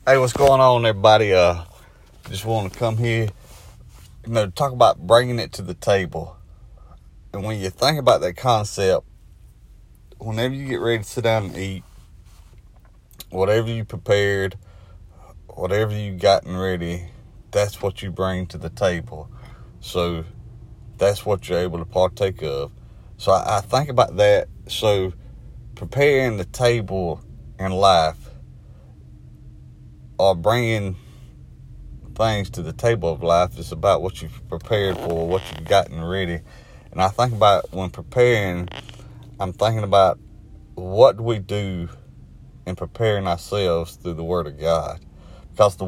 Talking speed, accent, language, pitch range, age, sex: 145 wpm, American, English, 85-110 Hz, 30-49, male